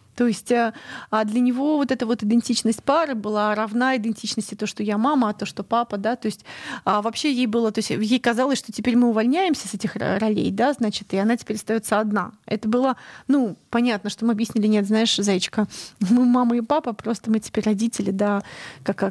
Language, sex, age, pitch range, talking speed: Russian, female, 30-49, 215-260 Hz, 200 wpm